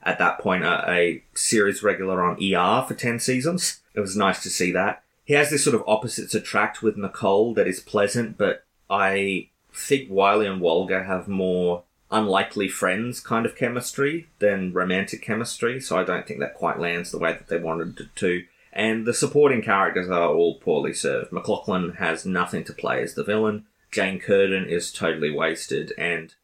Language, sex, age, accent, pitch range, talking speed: English, male, 30-49, Australian, 95-130 Hz, 185 wpm